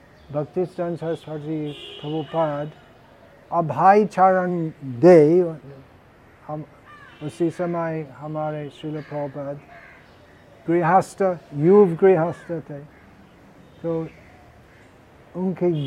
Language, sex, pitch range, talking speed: Hindi, male, 125-175 Hz, 75 wpm